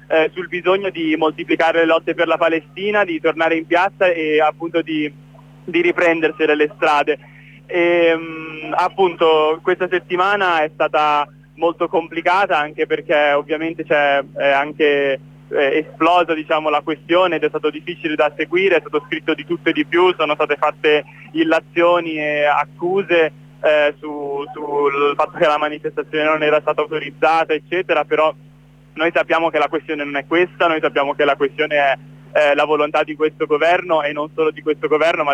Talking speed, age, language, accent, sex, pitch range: 170 wpm, 20-39, Italian, native, male, 145-165 Hz